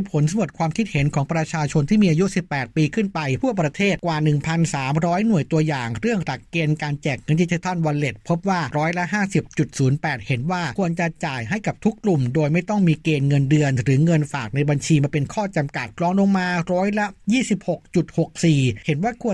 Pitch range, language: 145-175 Hz, Thai